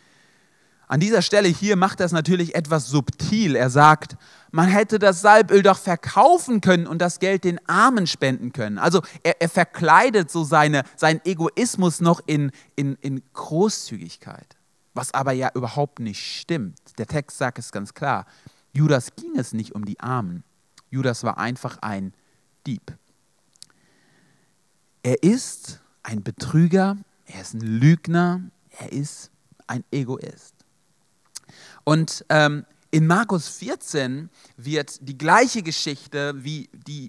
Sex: male